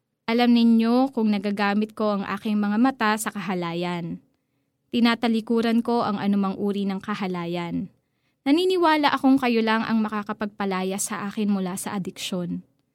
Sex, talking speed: female, 135 wpm